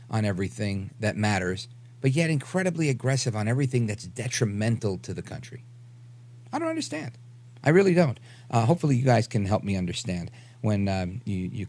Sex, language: male, English